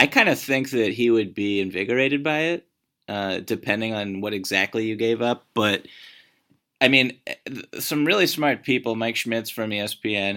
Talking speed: 175 wpm